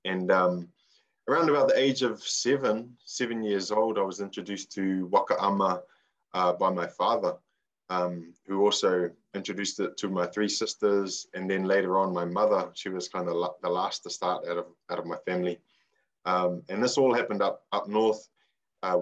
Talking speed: 185 wpm